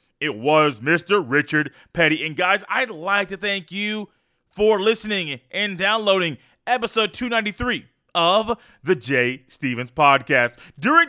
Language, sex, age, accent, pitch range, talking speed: English, male, 30-49, American, 175-225 Hz, 130 wpm